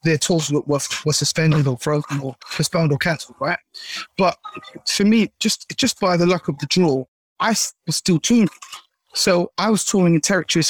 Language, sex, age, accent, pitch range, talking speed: English, male, 20-39, British, 145-170 Hz, 185 wpm